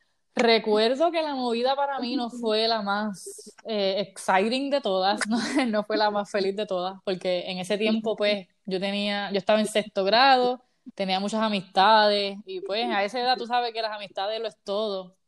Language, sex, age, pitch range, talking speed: Spanish, female, 10-29, 200-235 Hz, 195 wpm